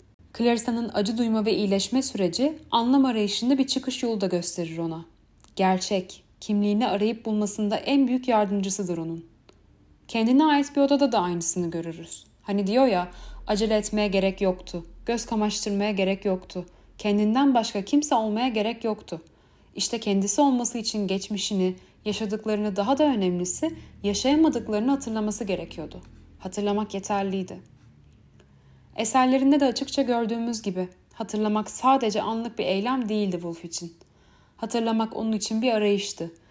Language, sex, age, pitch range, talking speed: Turkish, female, 30-49, 185-235 Hz, 130 wpm